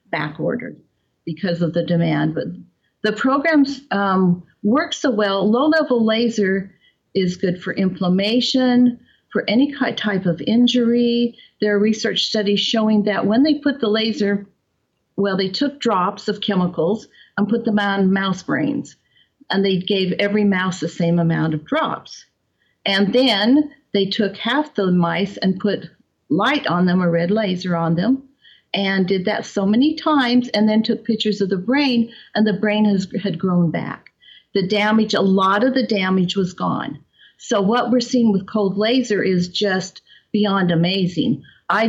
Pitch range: 185-230 Hz